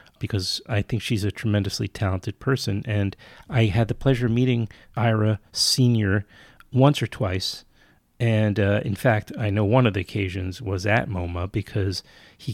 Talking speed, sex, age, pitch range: 165 wpm, male, 30-49, 100-125 Hz